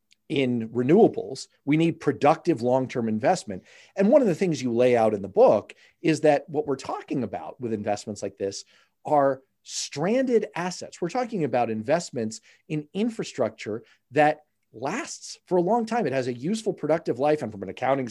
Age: 40-59